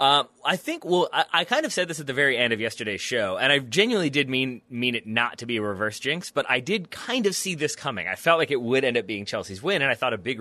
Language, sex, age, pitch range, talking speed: English, male, 20-39, 110-135 Hz, 305 wpm